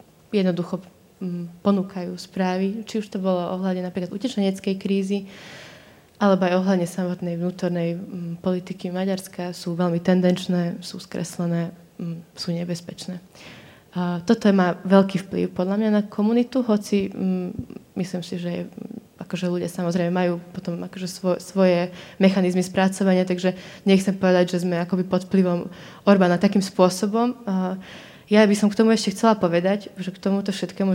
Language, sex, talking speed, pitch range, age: Slovak, female, 135 wpm, 180-200 Hz, 20-39